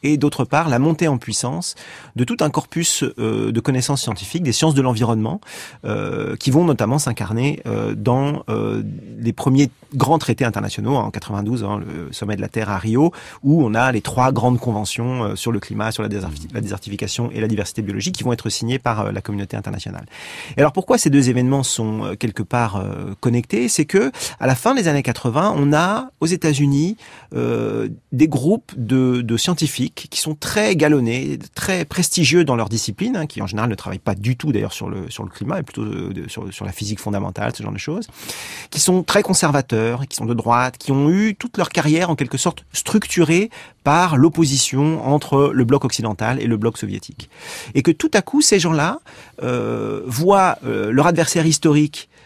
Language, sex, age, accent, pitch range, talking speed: French, male, 40-59, French, 110-155 Hz, 205 wpm